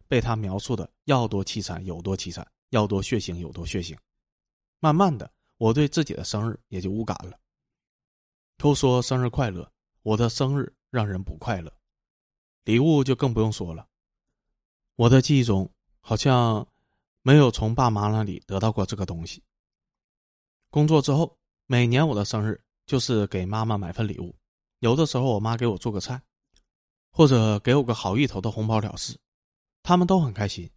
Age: 20-39